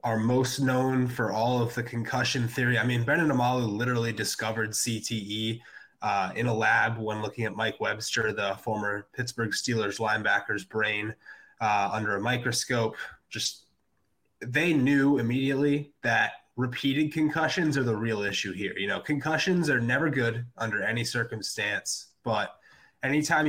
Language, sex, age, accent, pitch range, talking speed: English, male, 20-39, American, 110-135 Hz, 150 wpm